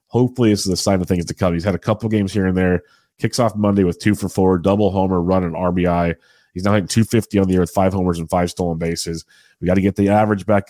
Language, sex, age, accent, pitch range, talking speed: English, male, 30-49, American, 90-105 Hz, 280 wpm